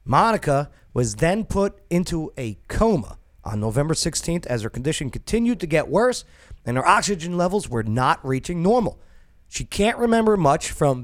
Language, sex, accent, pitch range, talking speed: English, male, American, 105-175 Hz, 165 wpm